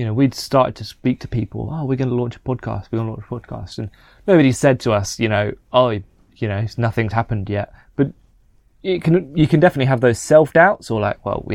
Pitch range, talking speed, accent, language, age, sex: 110-130 Hz, 250 wpm, British, English, 20-39, male